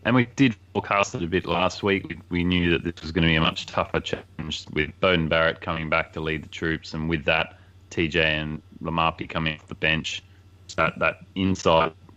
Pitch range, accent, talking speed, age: 80-95 Hz, Australian, 210 wpm, 20-39